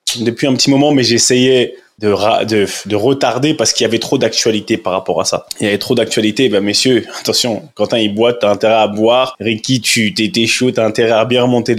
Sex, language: male, French